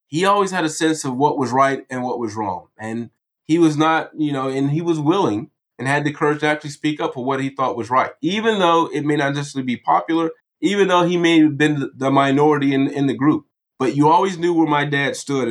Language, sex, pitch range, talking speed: English, male, 125-160 Hz, 250 wpm